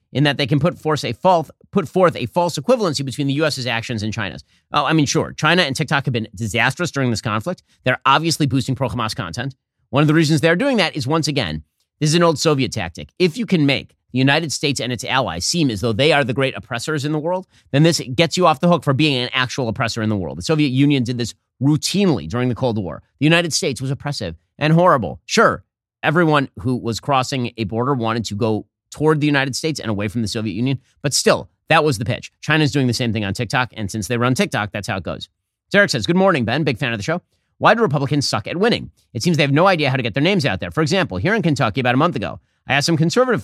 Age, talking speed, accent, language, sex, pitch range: 30-49, 260 wpm, American, English, male, 115-155 Hz